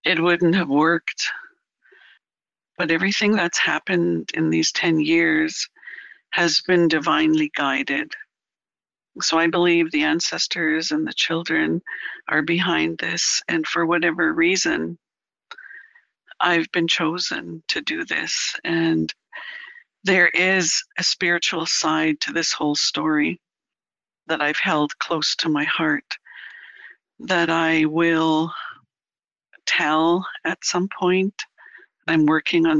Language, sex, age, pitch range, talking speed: English, female, 60-79, 155-185 Hz, 115 wpm